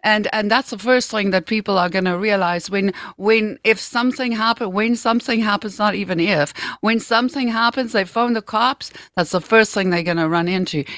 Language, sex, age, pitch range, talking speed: English, female, 60-79, 185-250 Hz, 200 wpm